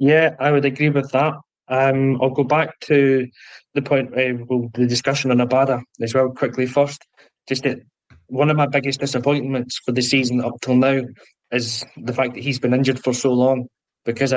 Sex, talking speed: male, 195 wpm